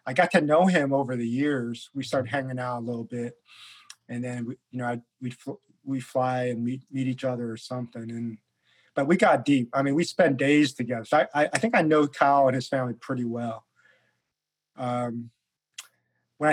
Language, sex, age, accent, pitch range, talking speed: English, male, 40-59, American, 125-150 Hz, 205 wpm